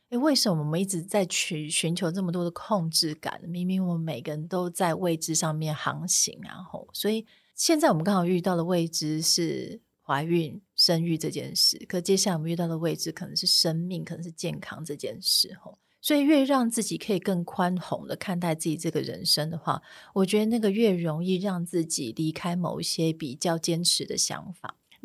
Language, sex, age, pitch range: Chinese, female, 30-49, 160-200 Hz